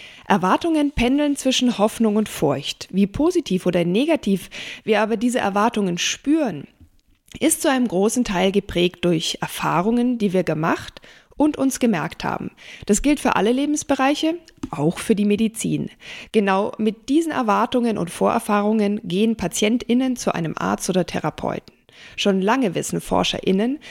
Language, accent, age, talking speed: German, German, 50-69, 140 wpm